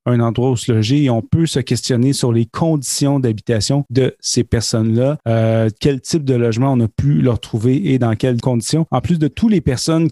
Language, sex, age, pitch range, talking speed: French, male, 30-49, 115-140 Hz, 220 wpm